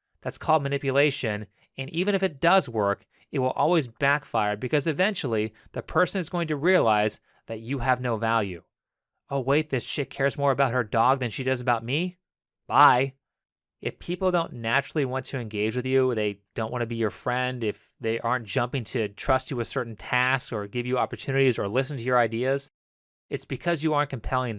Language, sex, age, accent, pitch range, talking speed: English, male, 30-49, American, 115-145 Hz, 200 wpm